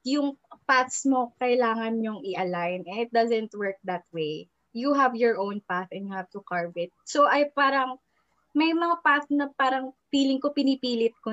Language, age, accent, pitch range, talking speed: Filipino, 20-39, native, 205-260 Hz, 180 wpm